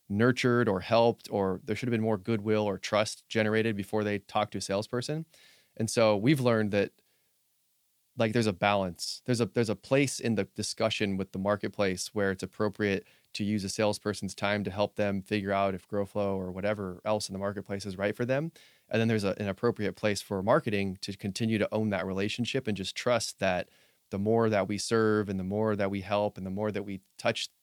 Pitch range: 100-110 Hz